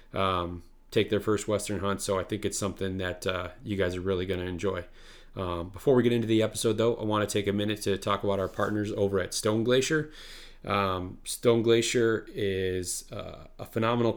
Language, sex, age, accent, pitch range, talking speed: English, male, 30-49, American, 95-105 Hz, 210 wpm